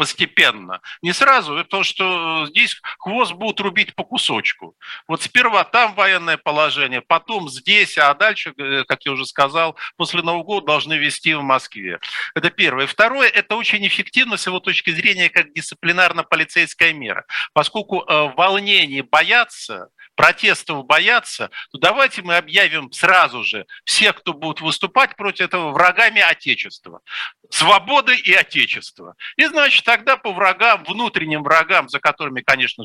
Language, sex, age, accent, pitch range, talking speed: Russian, male, 50-69, native, 135-200 Hz, 140 wpm